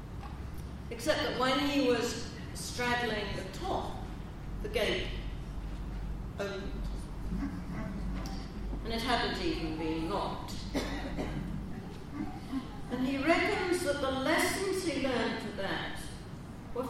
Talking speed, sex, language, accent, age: 100 wpm, female, English, British, 40-59